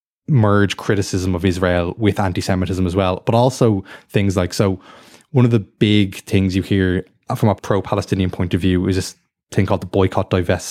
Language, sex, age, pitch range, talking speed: English, male, 20-39, 90-105 Hz, 185 wpm